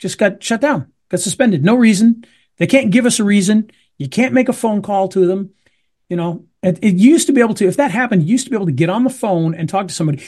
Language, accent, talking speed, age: English, American, 280 wpm, 40-59